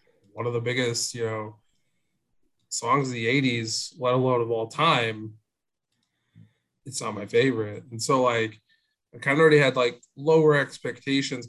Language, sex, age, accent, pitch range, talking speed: English, male, 20-39, American, 110-135 Hz, 155 wpm